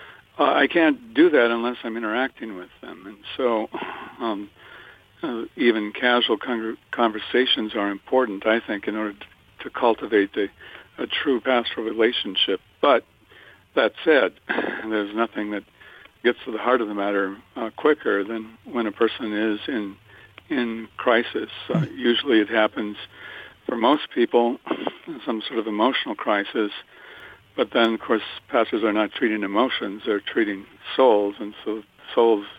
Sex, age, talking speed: male, 60-79, 150 wpm